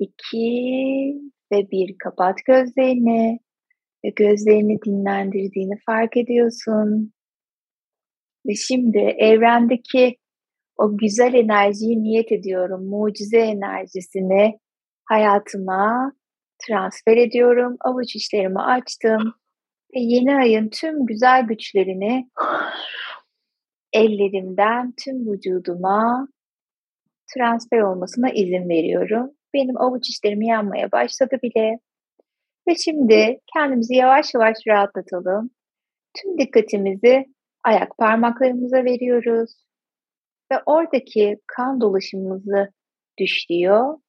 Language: Turkish